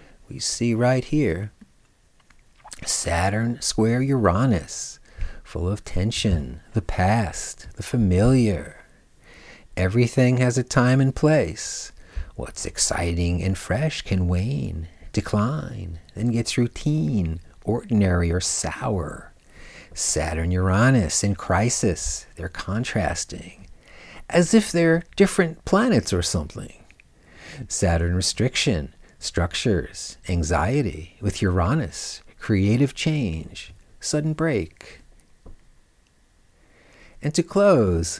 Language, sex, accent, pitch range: English, male, American, 85-130 Hz